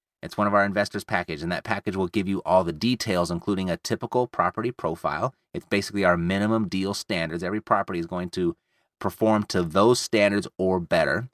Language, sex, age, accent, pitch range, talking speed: English, male, 30-49, American, 100-135 Hz, 195 wpm